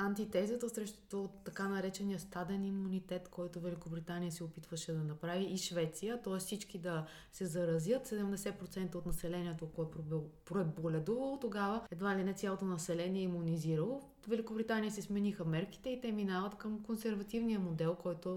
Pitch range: 165-205 Hz